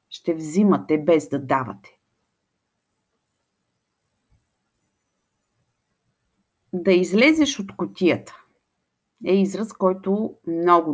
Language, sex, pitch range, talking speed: Bulgarian, female, 150-210 Hz, 70 wpm